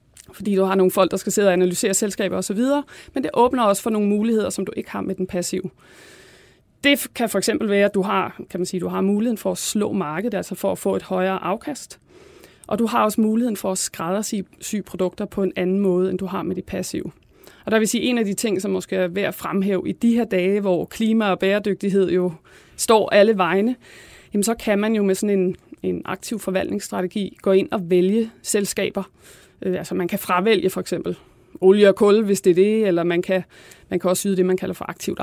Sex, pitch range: female, 185-215 Hz